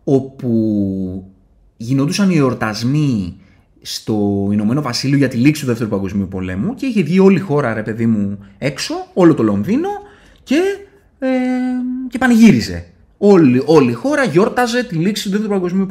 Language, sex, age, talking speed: Greek, male, 20-39, 150 wpm